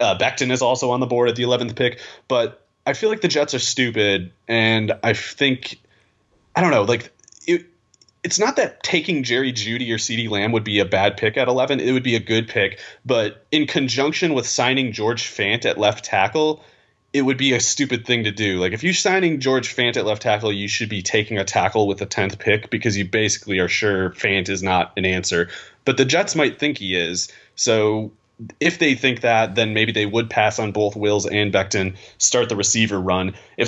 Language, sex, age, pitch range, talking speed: English, male, 30-49, 100-125 Hz, 215 wpm